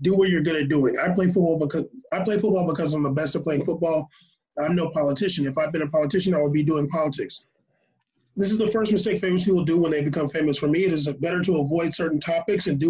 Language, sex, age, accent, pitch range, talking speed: English, male, 20-39, American, 145-175 Hz, 260 wpm